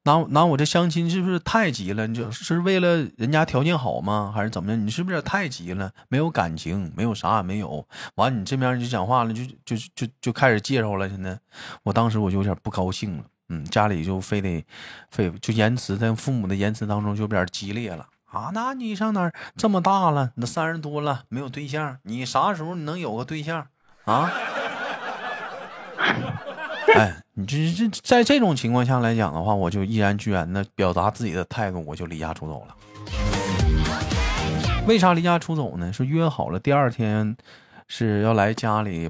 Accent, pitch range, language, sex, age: native, 100-145 Hz, Chinese, male, 20-39